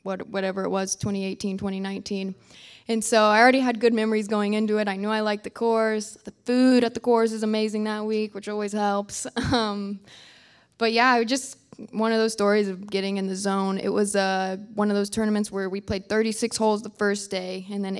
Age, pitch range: 20-39, 195-225 Hz